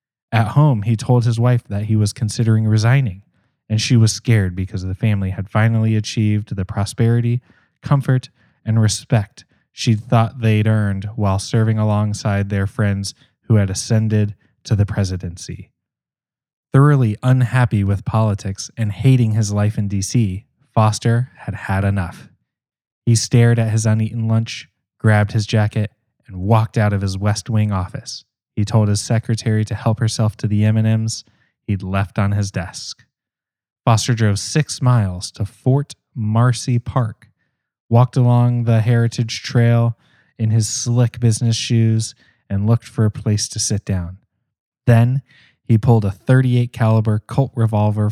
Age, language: 20-39, English